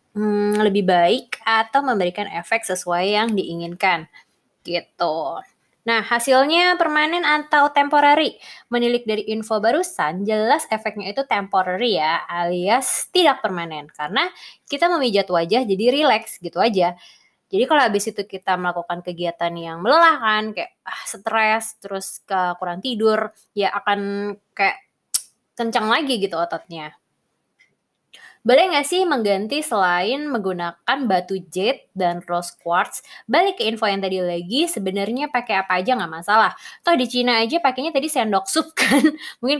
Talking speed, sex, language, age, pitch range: 135 wpm, female, Indonesian, 20-39, 185-260 Hz